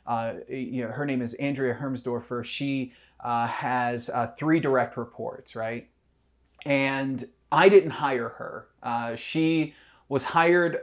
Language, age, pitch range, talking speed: English, 30-49, 125-160 Hz, 140 wpm